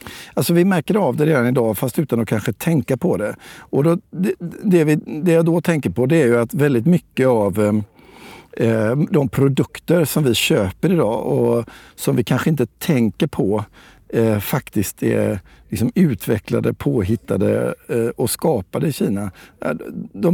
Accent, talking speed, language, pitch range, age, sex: native, 170 wpm, Swedish, 115-150 Hz, 50-69, male